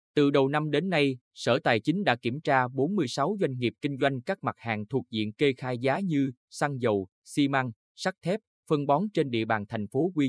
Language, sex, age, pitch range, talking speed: Vietnamese, male, 20-39, 115-150 Hz, 225 wpm